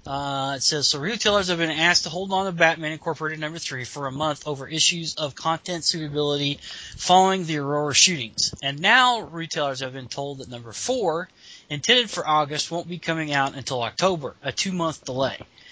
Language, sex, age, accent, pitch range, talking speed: English, male, 20-39, American, 135-165 Hz, 185 wpm